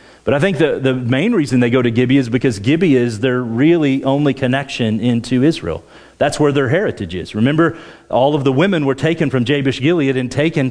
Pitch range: 105-165 Hz